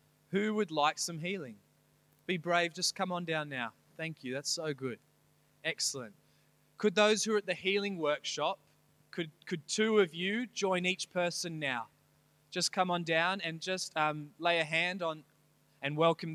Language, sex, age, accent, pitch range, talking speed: English, male, 20-39, Australian, 160-190 Hz, 175 wpm